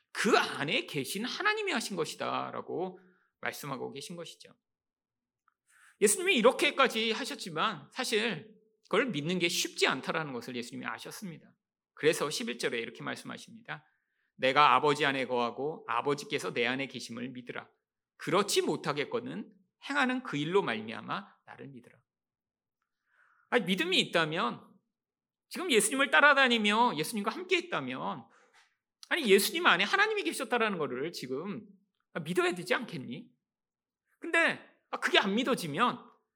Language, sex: Korean, male